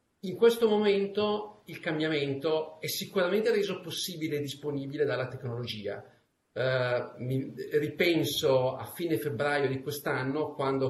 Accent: native